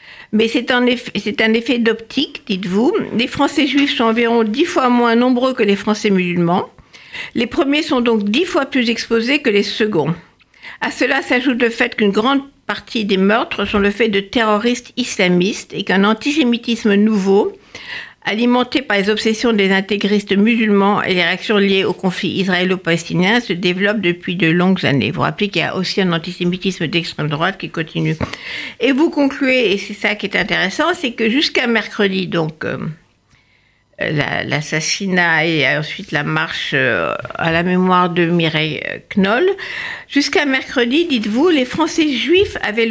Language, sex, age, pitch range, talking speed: French, female, 60-79, 185-255 Hz, 165 wpm